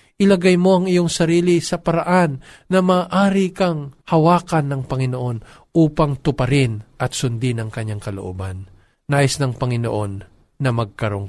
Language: Filipino